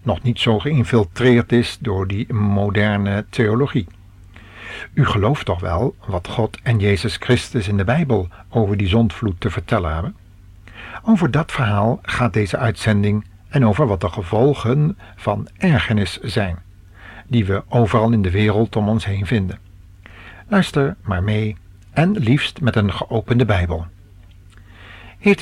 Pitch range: 95-120 Hz